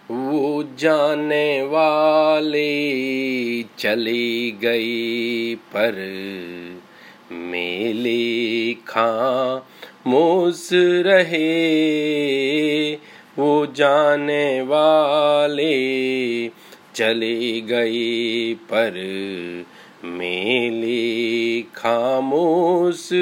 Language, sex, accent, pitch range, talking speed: Hindi, male, native, 115-150 Hz, 40 wpm